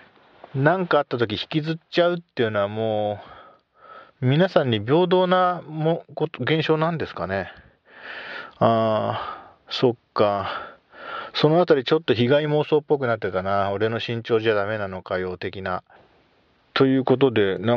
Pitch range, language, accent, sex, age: 105-155 Hz, Japanese, native, male, 40-59